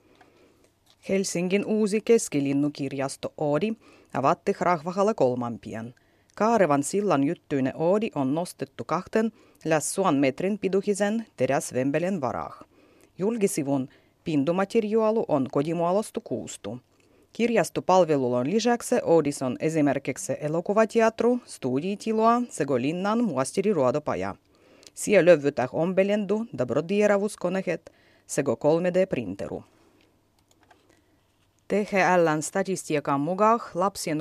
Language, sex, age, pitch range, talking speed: Finnish, female, 30-49, 135-195 Hz, 80 wpm